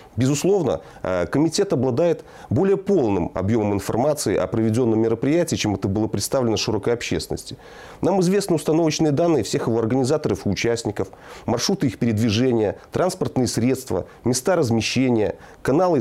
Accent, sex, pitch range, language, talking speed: native, male, 125-195 Hz, Russian, 125 wpm